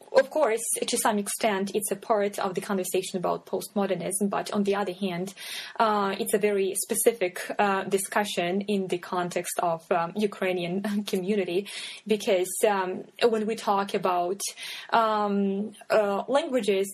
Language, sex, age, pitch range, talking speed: English, female, 20-39, 185-215 Hz, 145 wpm